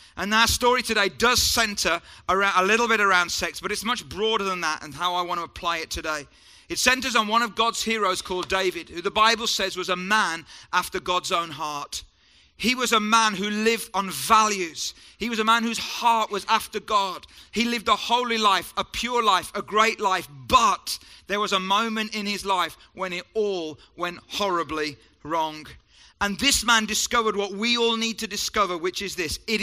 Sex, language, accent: male, English, British